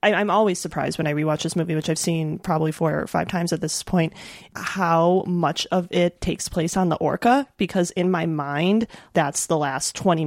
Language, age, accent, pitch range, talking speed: English, 30-49, American, 155-185 Hz, 210 wpm